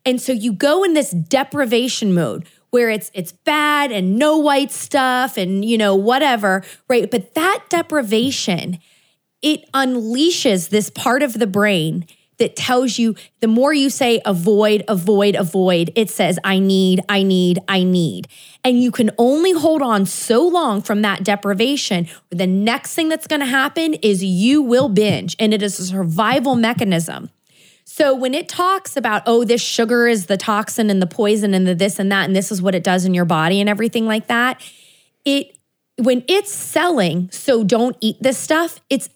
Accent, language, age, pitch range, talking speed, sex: American, English, 20-39, 200-270 Hz, 180 wpm, female